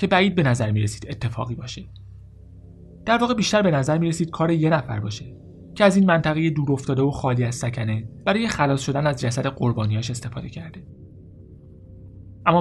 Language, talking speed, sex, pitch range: Persian, 175 wpm, male, 110-140 Hz